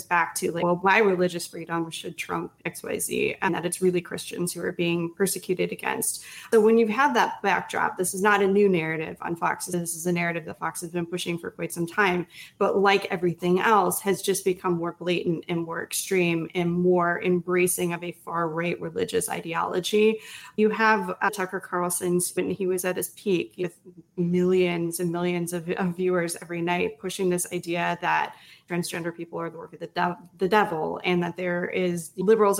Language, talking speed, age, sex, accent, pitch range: English, 195 wpm, 20-39, female, American, 175-195 Hz